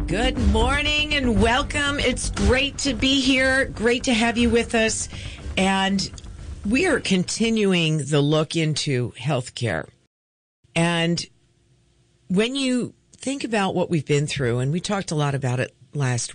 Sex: female